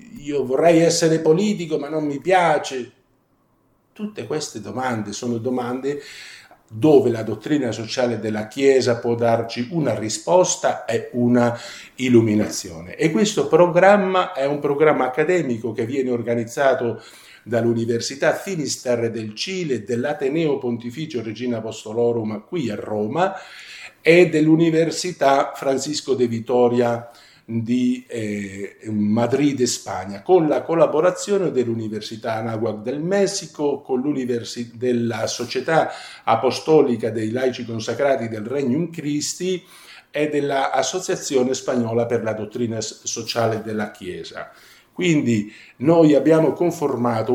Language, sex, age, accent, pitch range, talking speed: Italian, male, 50-69, native, 115-155 Hz, 115 wpm